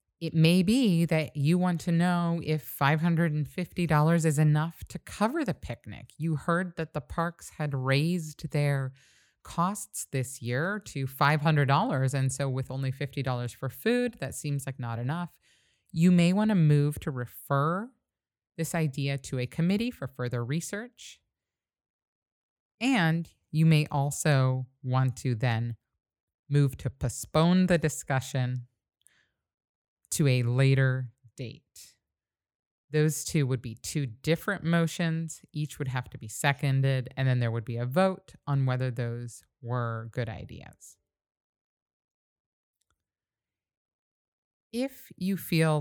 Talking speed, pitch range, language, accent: 130 wpm, 125-165 Hz, English, American